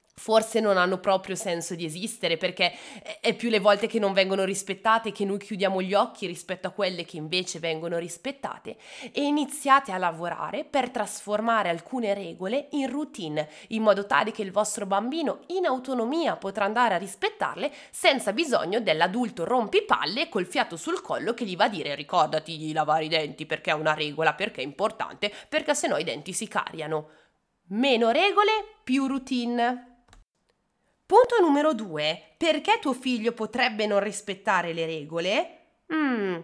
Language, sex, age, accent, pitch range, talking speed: Italian, female, 20-39, native, 185-295 Hz, 160 wpm